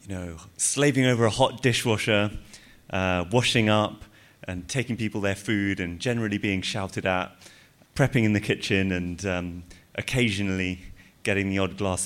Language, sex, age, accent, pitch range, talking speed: English, male, 30-49, British, 90-105 Hz, 155 wpm